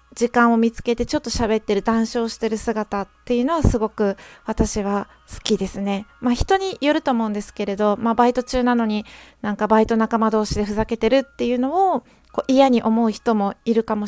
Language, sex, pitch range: Japanese, female, 225-285 Hz